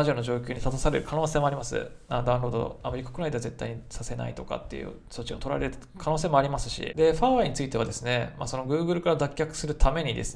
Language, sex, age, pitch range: Japanese, male, 20-39, 120-155 Hz